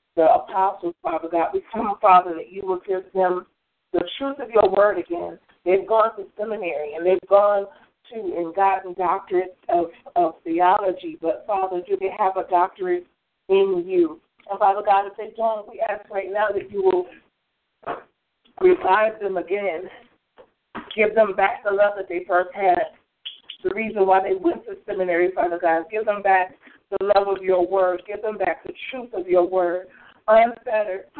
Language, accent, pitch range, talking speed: English, American, 185-225 Hz, 180 wpm